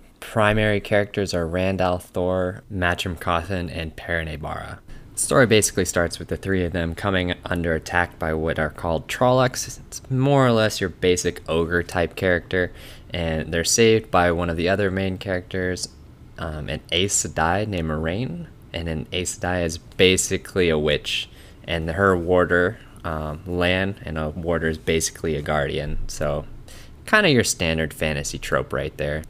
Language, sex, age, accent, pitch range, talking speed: English, male, 20-39, American, 80-100 Hz, 160 wpm